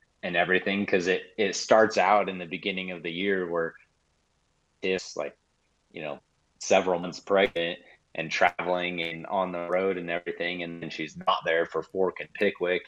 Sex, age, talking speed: male, 30-49, 175 wpm